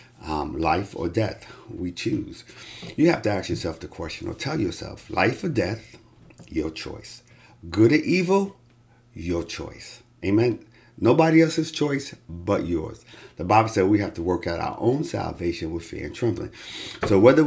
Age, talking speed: 50-69, 170 wpm